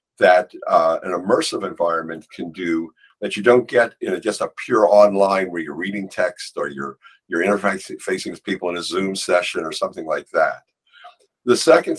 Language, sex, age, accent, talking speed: English, male, 50-69, American, 180 wpm